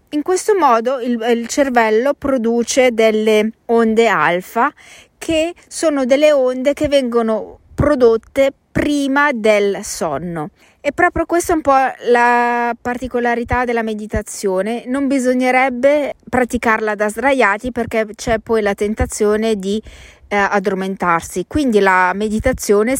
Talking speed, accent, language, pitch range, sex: 120 wpm, native, Italian, 205-260 Hz, female